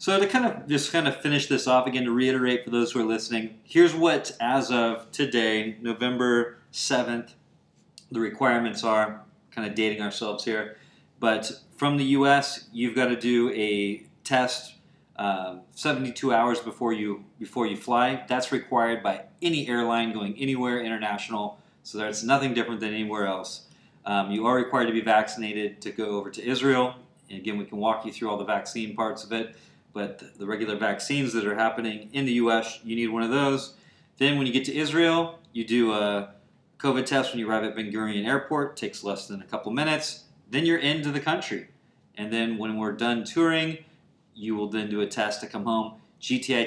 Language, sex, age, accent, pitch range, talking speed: English, male, 30-49, American, 110-135 Hz, 195 wpm